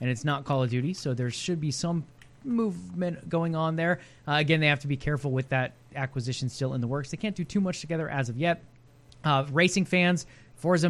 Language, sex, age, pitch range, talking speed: English, male, 20-39, 135-165 Hz, 230 wpm